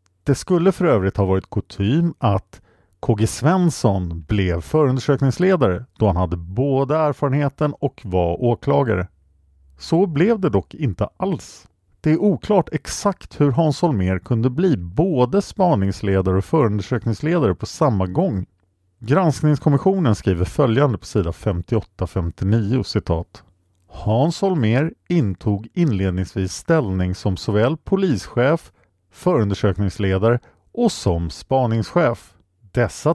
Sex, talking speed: male, 110 wpm